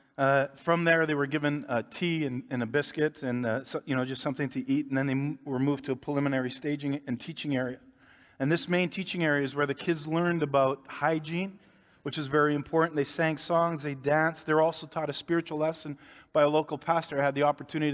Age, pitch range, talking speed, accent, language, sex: 40-59, 145-175 Hz, 230 wpm, American, English, male